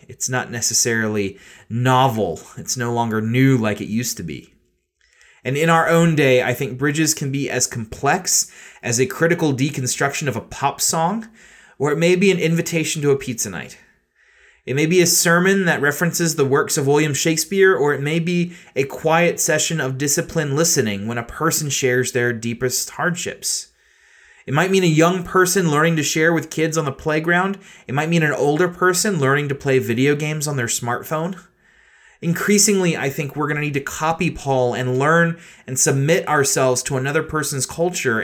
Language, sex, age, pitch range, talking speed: English, male, 30-49, 125-165 Hz, 185 wpm